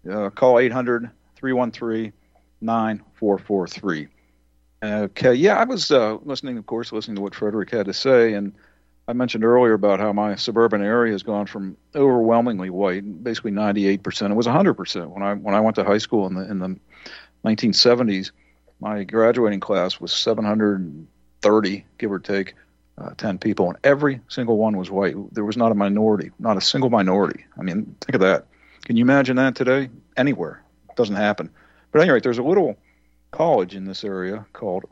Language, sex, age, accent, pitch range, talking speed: English, male, 50-69, American, 95-115 Hz, 165 wpm